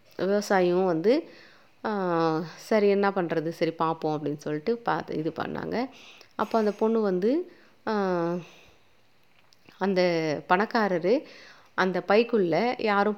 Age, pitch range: 30-49, 170-215 Hz